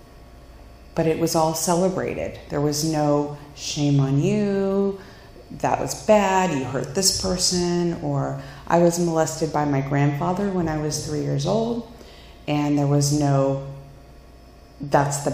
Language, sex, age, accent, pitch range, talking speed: English, female, 40-59, American, 135-165 Hz, 145 wpm